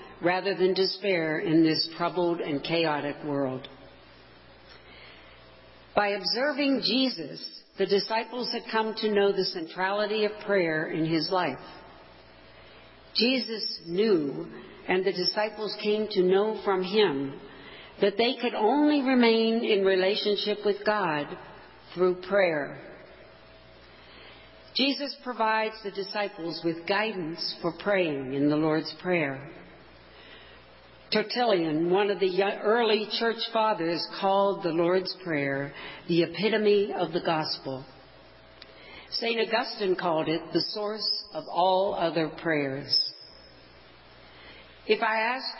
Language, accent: English, American